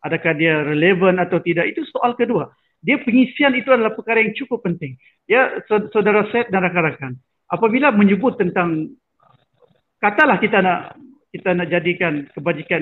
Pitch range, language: 165-220 Hz, Malay